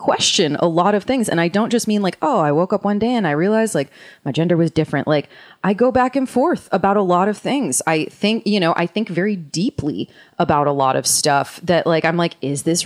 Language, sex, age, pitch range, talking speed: English, female, 30-49, 160-205 Hz, 255 wpm